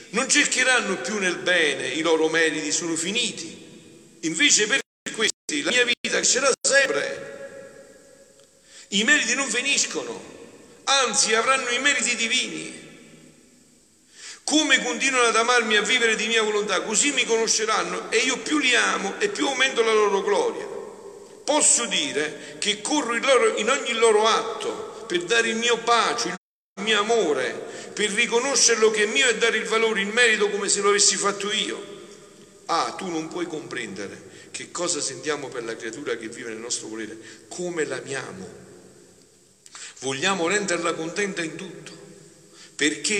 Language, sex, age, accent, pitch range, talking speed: Italian, male, 50-69, native, 185-290 Hz, 150 wpm